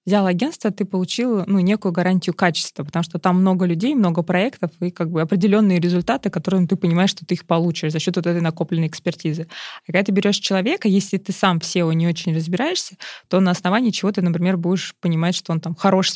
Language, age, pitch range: Russian, 20-39, 165-190 Hz